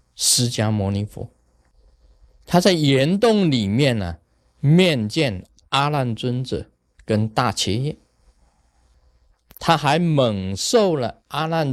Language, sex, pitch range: Chinese, male, 85-140 Hz